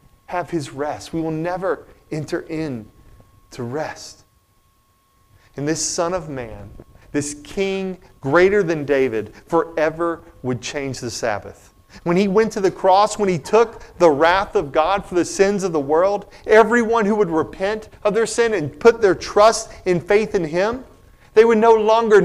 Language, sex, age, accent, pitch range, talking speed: English, male, 40-59, American, 115-180 Hz, 170 wpm